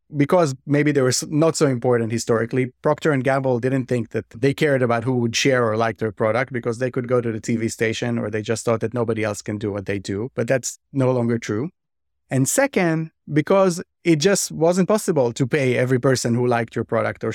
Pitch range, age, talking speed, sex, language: 120-160 Hz, 30-49, 220 wpm, male, English